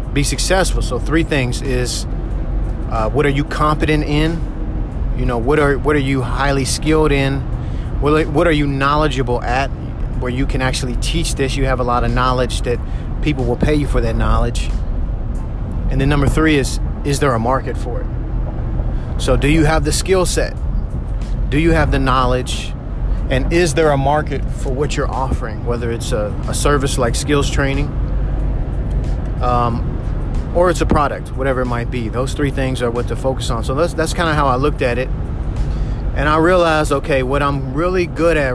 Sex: male